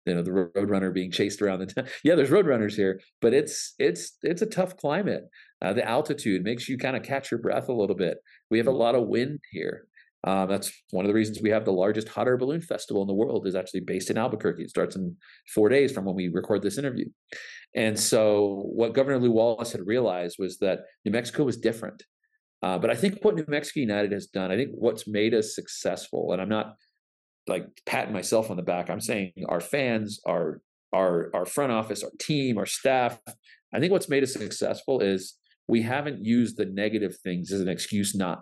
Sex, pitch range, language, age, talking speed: male, 95-135 Hz, English, 40-59, 220 wpm